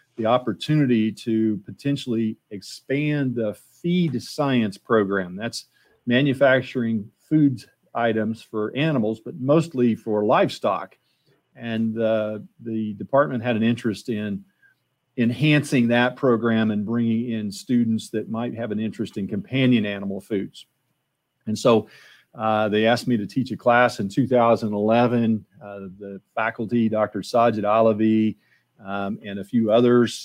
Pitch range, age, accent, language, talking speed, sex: 110-130 Hz, 40-59, American, English, 130 wpm, male